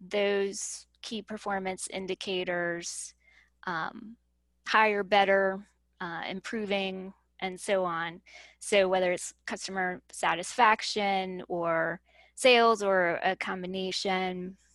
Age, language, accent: 20-39, English, American